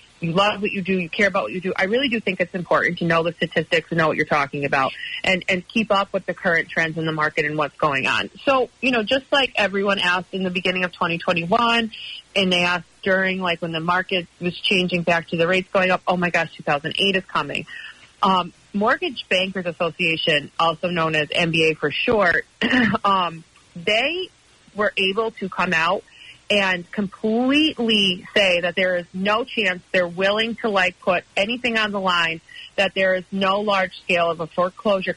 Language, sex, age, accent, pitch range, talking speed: English, female, 30-49, American, 170-200 Hz, 205 wpm